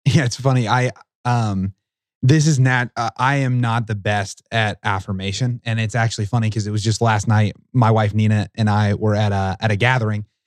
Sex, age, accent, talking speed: male, 20-39, American, 210 wpm